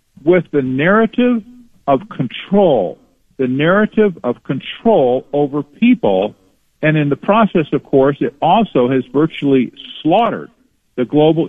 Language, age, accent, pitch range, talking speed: English, 50-69, American, 140-205 Hz, 125 wpm